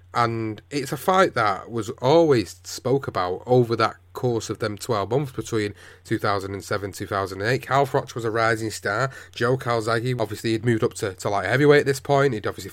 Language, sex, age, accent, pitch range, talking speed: English, male, 30-49, British, 100-130 Hz, 200 wpm